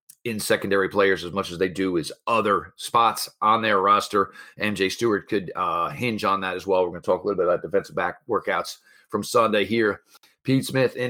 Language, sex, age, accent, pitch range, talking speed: English, male, 40-59, American, 115-180 Hz, 215 wpm